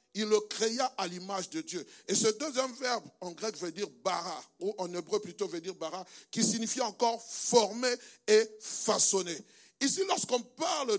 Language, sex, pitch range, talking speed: French, male, 180-265 Hz, 175 wpm